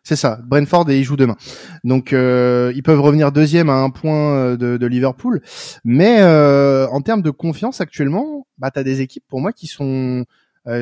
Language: French